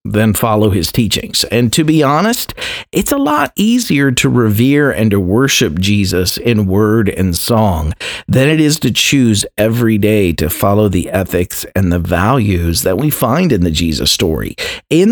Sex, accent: male, American